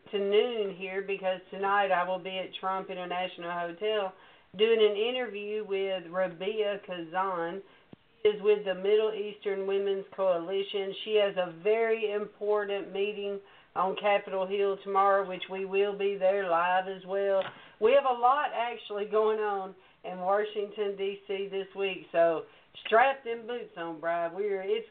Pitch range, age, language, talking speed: 190-240 Hz, 50-69, English, 155 wpm